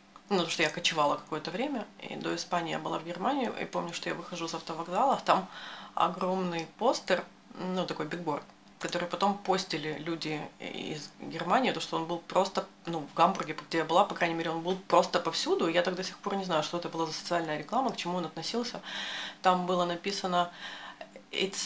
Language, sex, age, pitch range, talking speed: Russian, female, 30-49, 160-185 Hz, 200 wpm